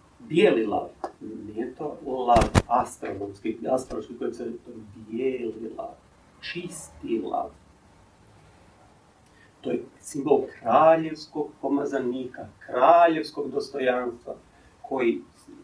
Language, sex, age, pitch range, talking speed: Croatian, male, 40-59, 120-160 Hz, 90 wpm